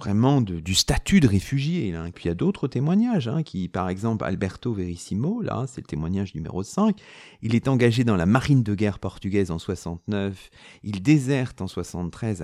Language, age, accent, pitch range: French, 40-59, French, 100-150 Hz